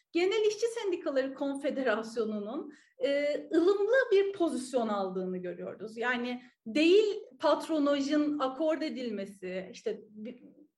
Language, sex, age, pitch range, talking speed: Turkish, female, 40-59, 235-335 Hz, 95 wpm